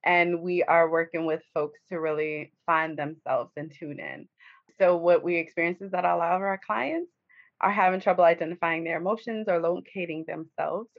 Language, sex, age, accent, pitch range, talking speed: English, female, 20-39, American, 170-210 Hz, 180 wpm